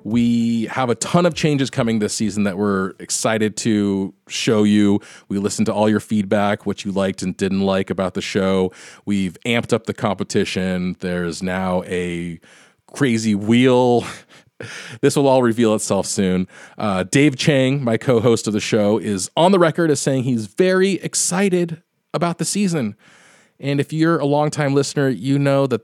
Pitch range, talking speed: 95-140 Hz, 175 wpm